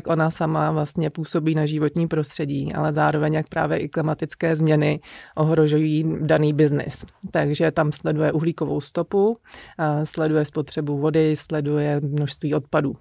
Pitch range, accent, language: 150-160 Hz, native, Czech